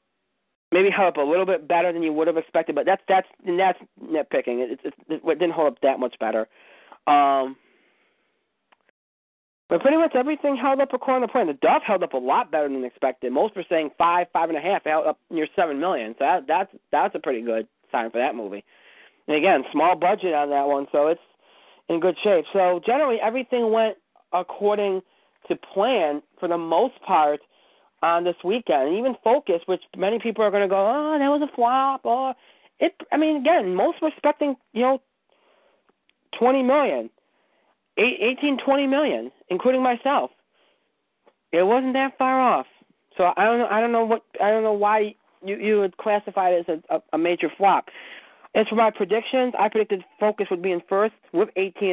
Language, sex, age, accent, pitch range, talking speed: English, male, 40-59, American, 170-255 Hz, 195 wpm